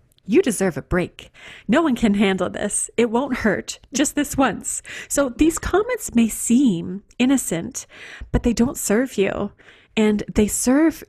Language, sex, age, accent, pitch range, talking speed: English, female, 30-49, American, 185-240 Hz, 155 wpm